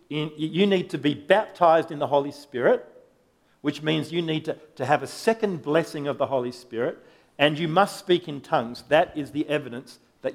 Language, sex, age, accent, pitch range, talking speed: English, male, 50-69, Australian, 135-175 Hz, 195 wpm